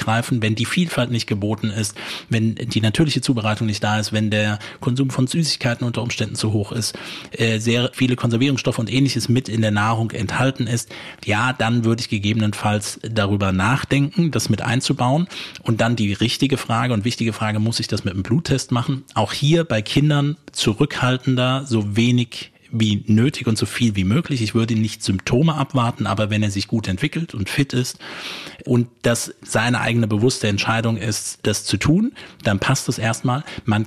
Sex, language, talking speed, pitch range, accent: male, German, 180 wpm, 110-130 Hz, German